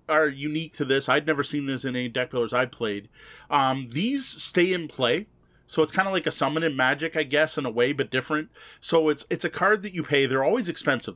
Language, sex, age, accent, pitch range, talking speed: English, male, 30-49, American, 130-160 Hz, 245 wpm